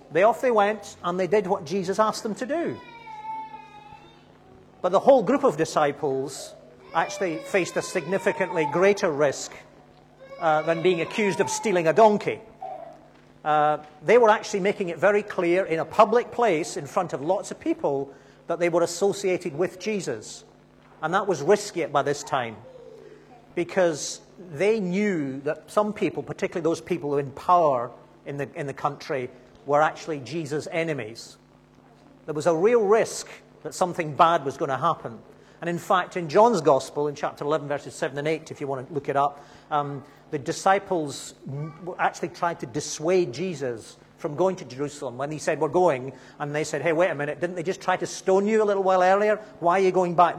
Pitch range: 150-200 Hz